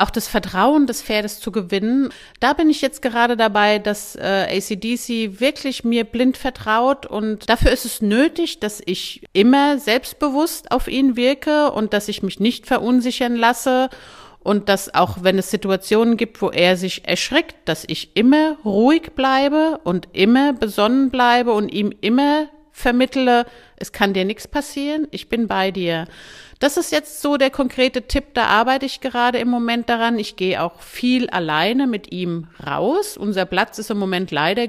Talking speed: 170 wpm